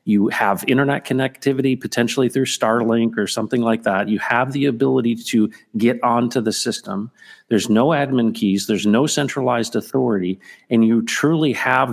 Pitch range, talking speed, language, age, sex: 110-140 Hz, 160 wpm, English, 40-59, male